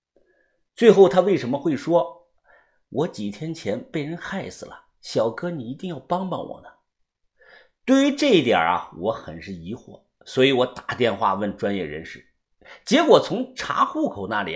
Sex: male